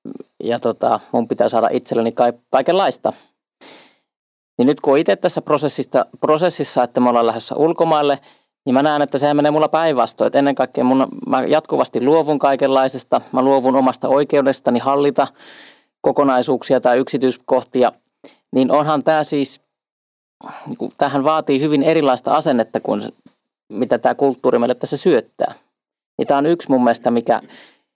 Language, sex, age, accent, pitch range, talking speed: Finnish, male, 30-49, native, 130-155 Hz, 140 wpm